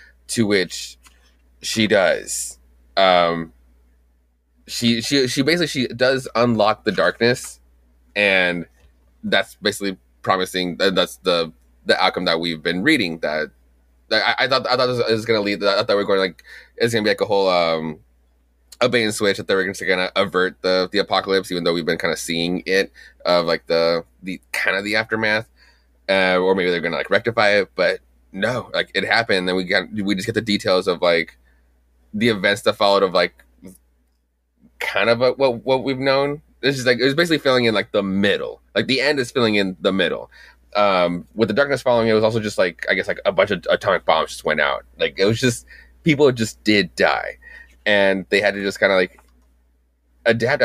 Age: 20-39